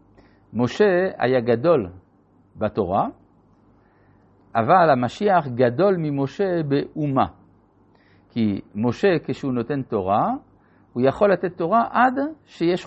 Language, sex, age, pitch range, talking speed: Hebrew, male, 50-69, 105-155 Hz, 95 wpm